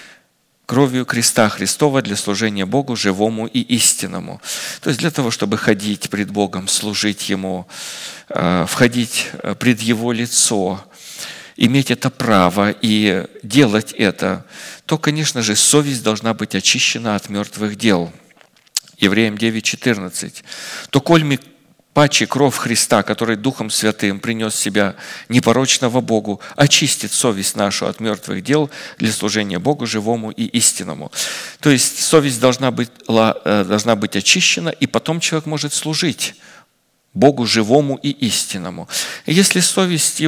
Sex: male